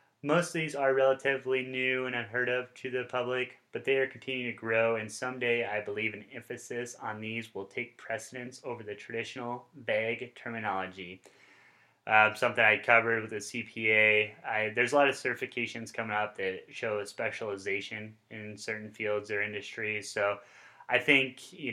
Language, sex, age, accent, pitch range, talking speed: English, male, 20-39, American, 105-125 Hz, 170 wpm